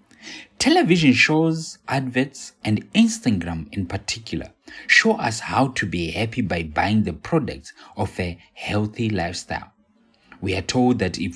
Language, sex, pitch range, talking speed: English, male, 85-125 Hz, 135 wpm